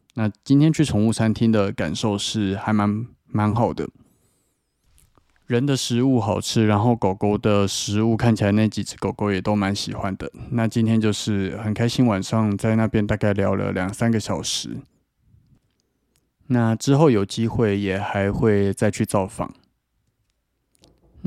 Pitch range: 100-120 Hz